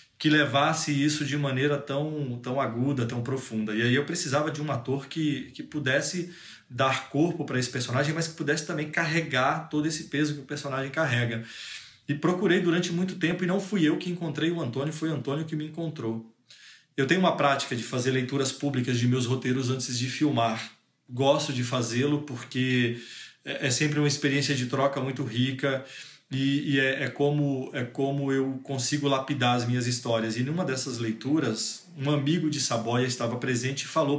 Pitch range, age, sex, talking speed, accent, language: 125-145 Hz, 20-39, male, 185 wpm, Brazilian, Portuguese